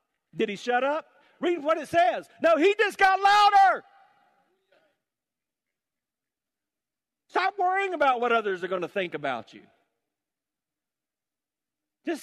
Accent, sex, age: American, male, 50-69